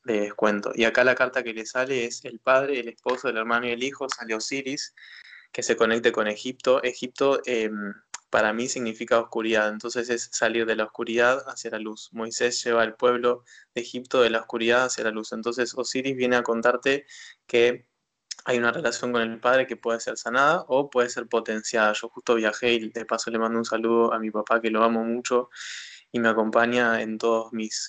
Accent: Argentinian